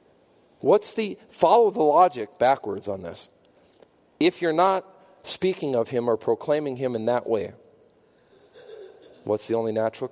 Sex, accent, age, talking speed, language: male, American, 40-59, 140 wpm, English